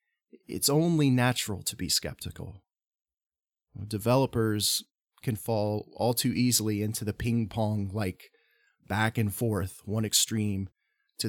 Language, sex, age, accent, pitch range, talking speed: English, male, 30-49, American, 105-130 Hz, 110 wpm